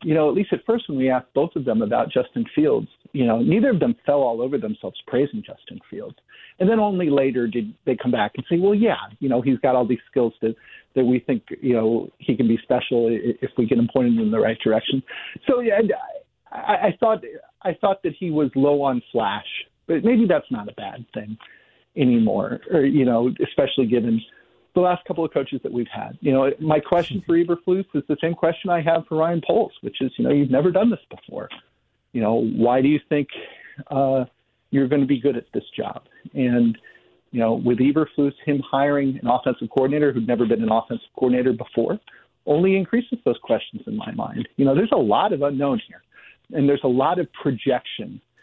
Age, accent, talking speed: 50-69, American, 220 wpm